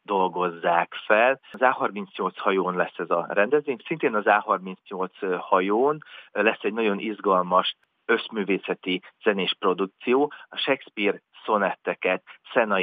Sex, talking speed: male, 110 wpm